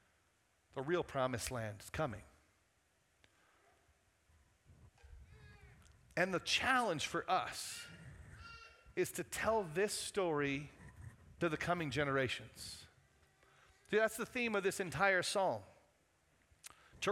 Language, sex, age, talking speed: English, male, 40-59, 100 wpm